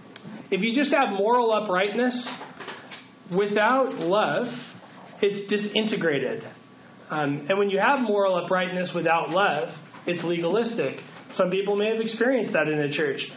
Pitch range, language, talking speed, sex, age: 165-225 Hz, English, 135 wpm, male, 30-49